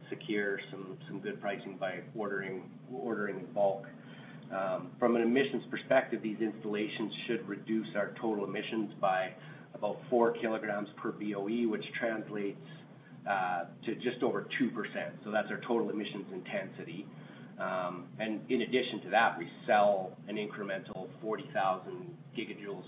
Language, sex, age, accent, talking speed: English, male, 40-59, American, 145 wpm